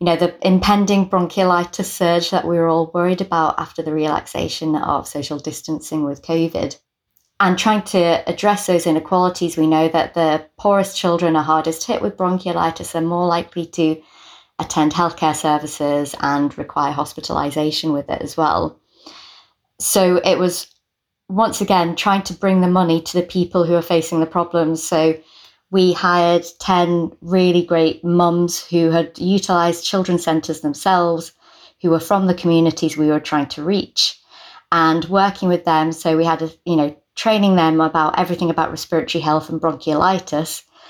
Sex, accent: female, British